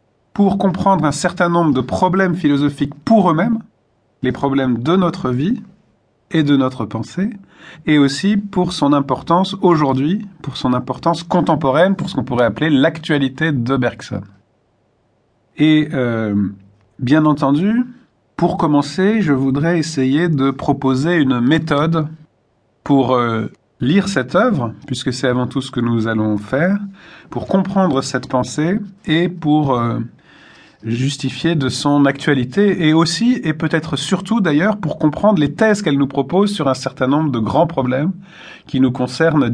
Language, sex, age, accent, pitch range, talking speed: French, male, 40-59, French, 130-175 Hz, 145 wpm